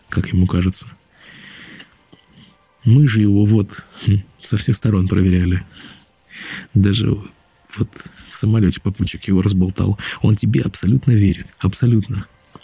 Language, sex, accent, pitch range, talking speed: Russian, male, native, 95-120 Hz, 120 wpm